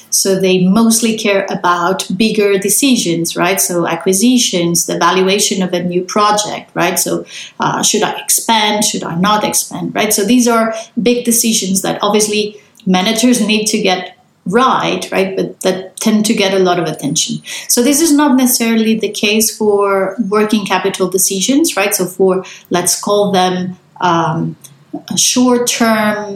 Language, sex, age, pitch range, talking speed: English, female, 30-49, 185-225 Hz, 155 wpm